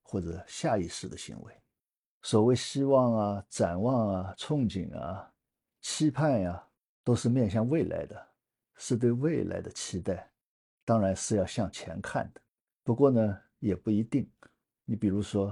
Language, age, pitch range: Chinese, 50-69, 95-125 Hz